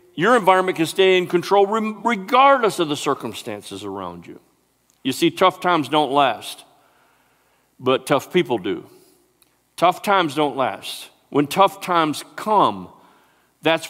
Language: English